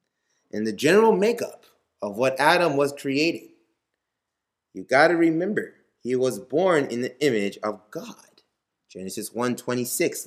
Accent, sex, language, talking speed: American, male, English, 135 wpm